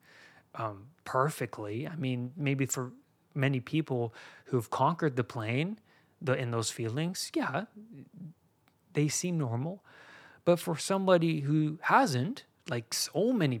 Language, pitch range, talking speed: English, 115-150 Hz, 120 wpm